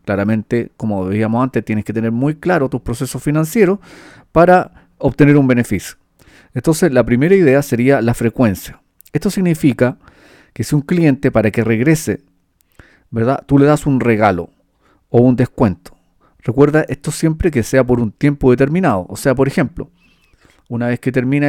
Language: Spanish